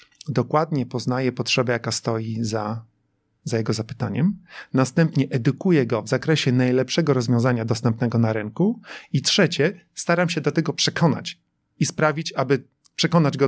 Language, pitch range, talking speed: Polish, 120-150 Hz, 140 wpm